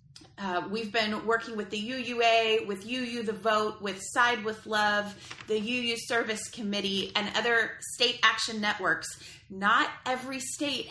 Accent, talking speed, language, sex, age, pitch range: American, 150 wpm, English, female, 30-49, 180-235 Hz